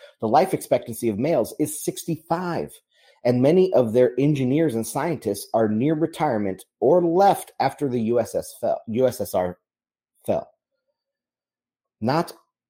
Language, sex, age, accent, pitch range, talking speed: English, male, 30-49, American, 105-150 Hz, 125 wpm